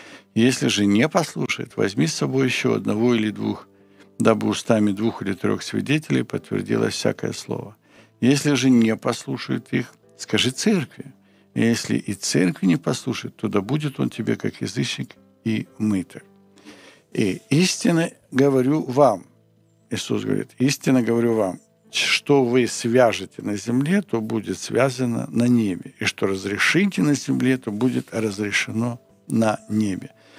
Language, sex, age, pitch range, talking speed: Ukrainian, male, 60-79, 105-125 Hz, 140 wpm